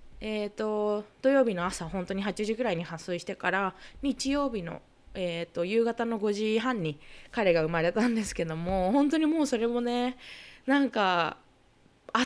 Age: 20-39